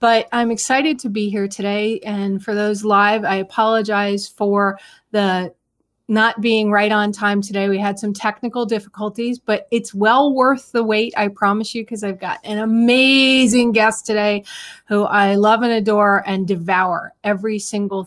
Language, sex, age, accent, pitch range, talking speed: English, female, 30-49, American, 195-225 Hz, 170 wpm